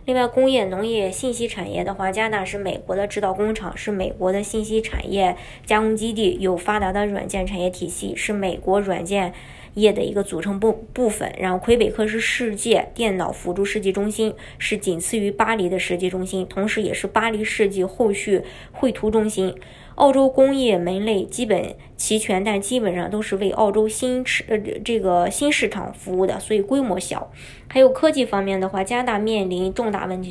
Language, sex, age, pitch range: Chinese, male, 20-39, 185-225 Hz